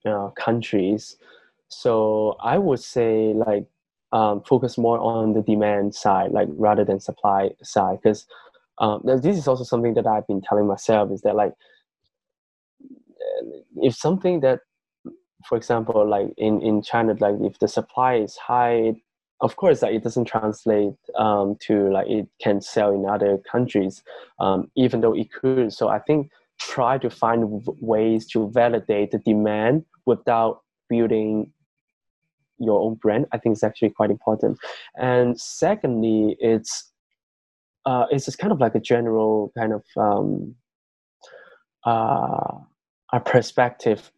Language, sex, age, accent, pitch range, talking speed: English, male, 10-29, Chinese, 105-125 Hz, 145 wpm